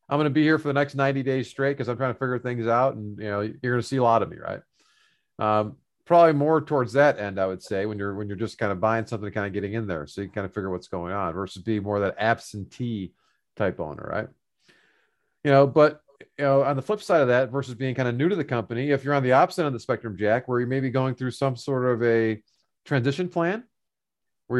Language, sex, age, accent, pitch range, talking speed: English, male, 40-59, American, 115-150 Hz, 280 wpm